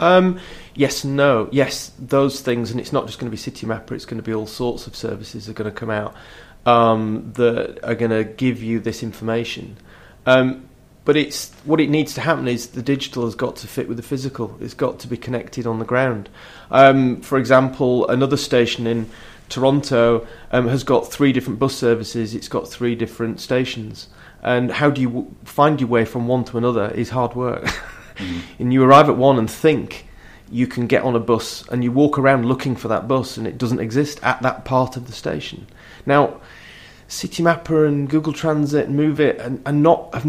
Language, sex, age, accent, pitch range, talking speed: English, male, 30-49, British, 115-140 Hz, 210 wpm